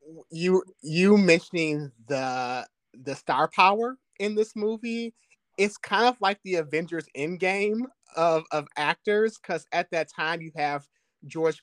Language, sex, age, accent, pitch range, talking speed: English, male, 30-49, American, 140-165 Hz, 140 wpm